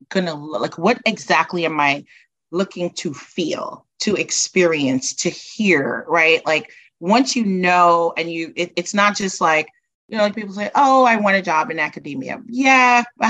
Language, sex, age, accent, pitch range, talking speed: English, female, 30-49, American, 160-205 Hz, 175 wpm